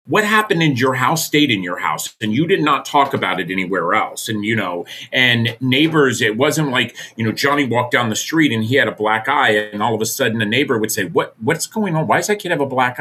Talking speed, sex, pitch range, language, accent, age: 270 wpm, male, 110-145 Hz, English, American, 40-59